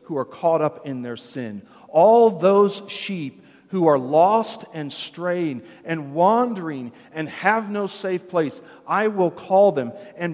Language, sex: English, male